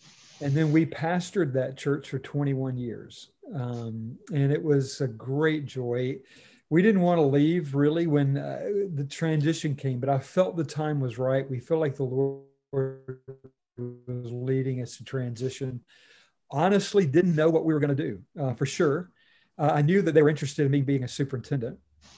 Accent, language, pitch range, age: American, English, 130-155 Hz, 50-69